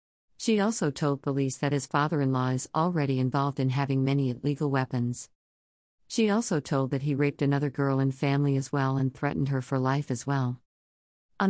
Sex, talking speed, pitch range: female, 185 wpm, 130-155 Hz